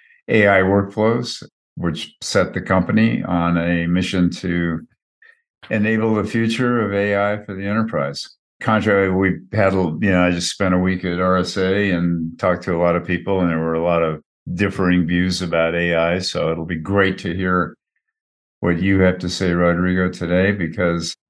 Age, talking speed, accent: 50-69, 175 wpm, American